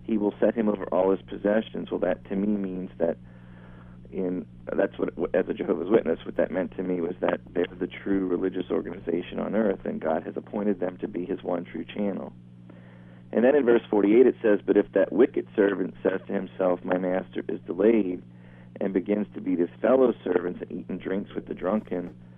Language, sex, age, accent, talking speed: English, male, 40-59, American, 210 wpm